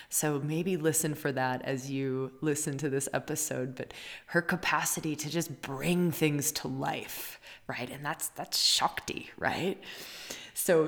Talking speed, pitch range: 150 wpm, 135-160 Hz